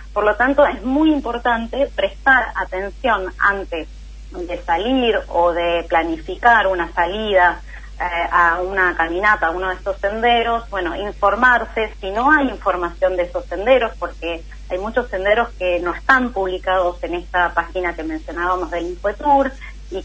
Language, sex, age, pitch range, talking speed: Spanish, female, 30-49, 175-230 Hz, 150 wpm